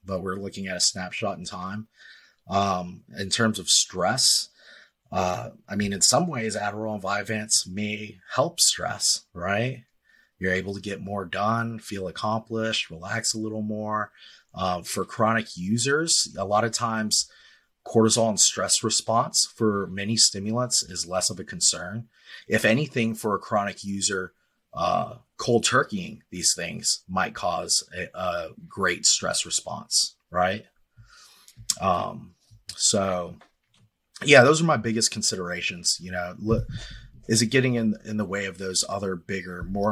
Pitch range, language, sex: 95-115 Hz, English, male